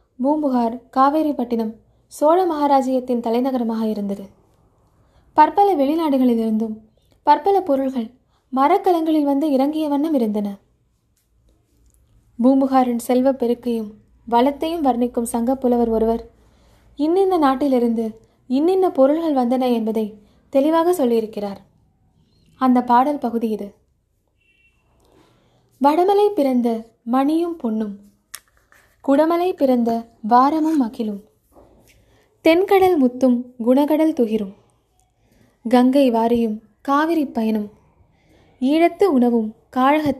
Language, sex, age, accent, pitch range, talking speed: Tamil, female, 20-39, native, 225-290 Hz, 80 wpm